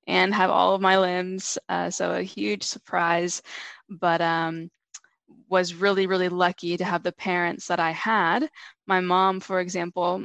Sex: female